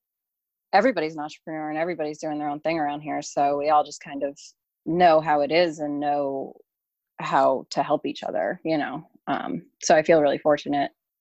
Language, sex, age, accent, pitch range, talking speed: English, female, 30-49, American, 145-170 Hz, 195 wpm